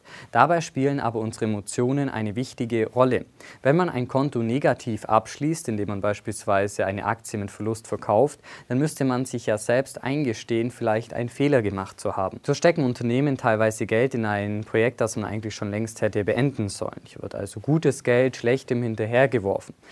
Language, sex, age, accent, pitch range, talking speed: German, male, 20-39, German, 110-135 Hz, 175 wpm